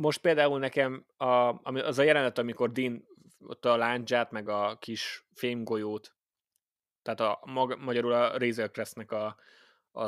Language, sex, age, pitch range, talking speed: Hungarian, male, 20-39, 105-125 Hz, 135 wpm